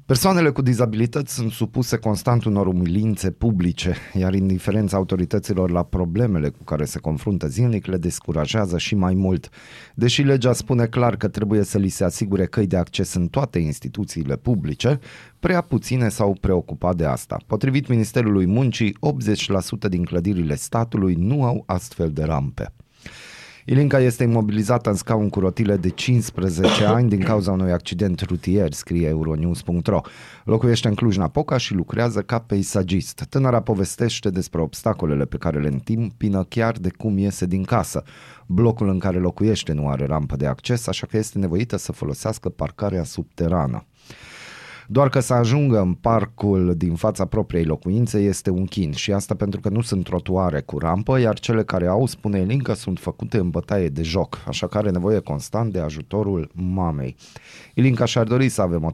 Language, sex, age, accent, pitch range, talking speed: Romanian, male, 30-49, native, 90-115 Hz, 165 wpm